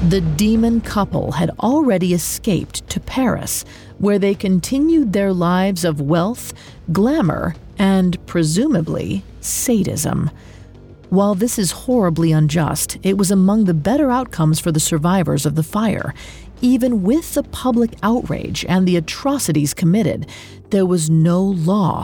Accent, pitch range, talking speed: American, 165-210 Hz, 135 wpm